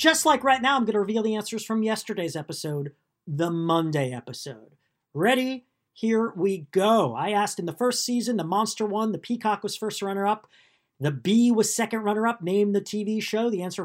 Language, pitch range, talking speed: English, 150-225 Hz, 195 wpm